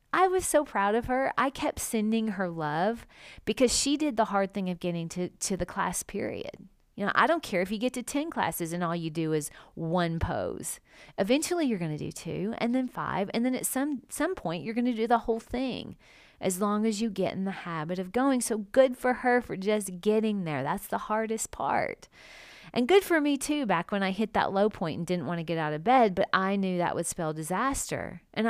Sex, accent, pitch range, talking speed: female, American, 180-250 Hz, 240 wpm